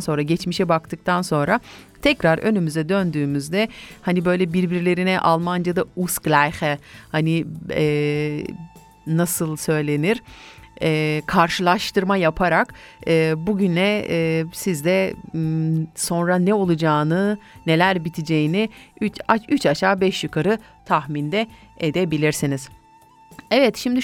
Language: German